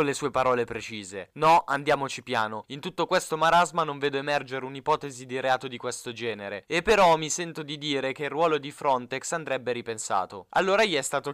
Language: Italian